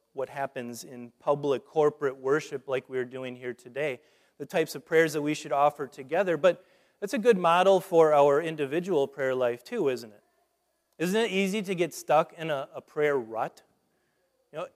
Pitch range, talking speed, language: 135-185 Hz, 185 wpm, English